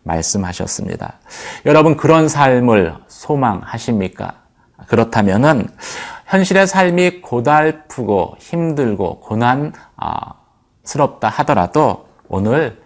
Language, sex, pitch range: Korean, male, 100-145 Hz